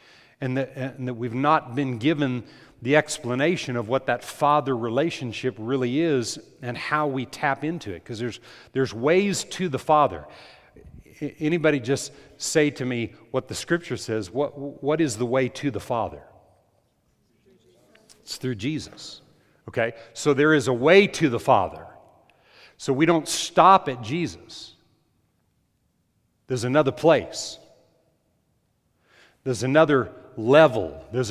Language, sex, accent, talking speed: English, male, American, 140 wpm